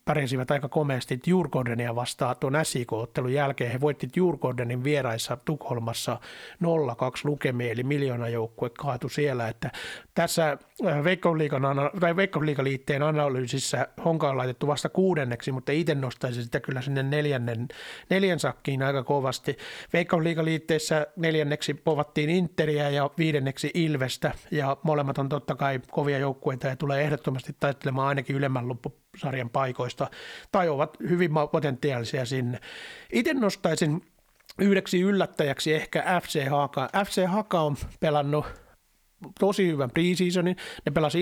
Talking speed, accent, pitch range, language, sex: 125 wpm, native, 135-160 Hz, Finnish, male